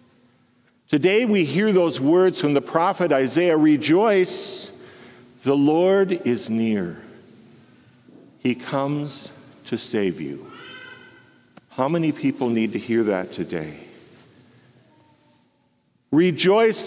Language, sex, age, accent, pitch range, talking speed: English, male, 50-69, American, 125-185 Hz, 100 wpm